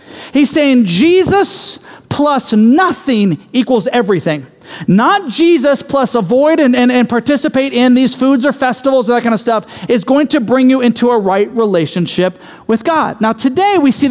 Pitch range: 225-310 Hz